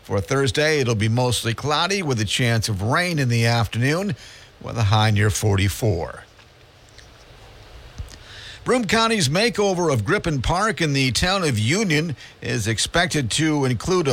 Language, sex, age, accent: English, male, 50-69, American